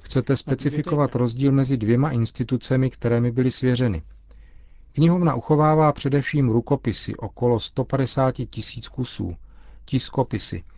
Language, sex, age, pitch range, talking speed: Czech, male, 40-59, 105-130 Hz, 100 wpm